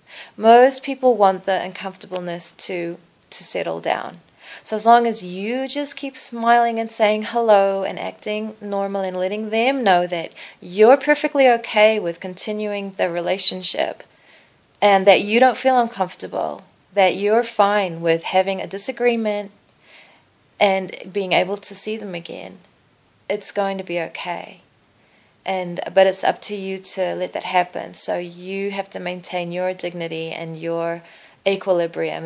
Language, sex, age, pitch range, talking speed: English, female, 30-49, 180-220 Hz, 150 wpm